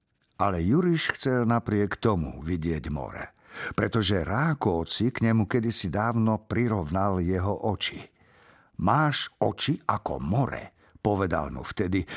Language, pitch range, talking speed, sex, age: Slovak, 95-135 Hz, 115 wpm, male, 50-69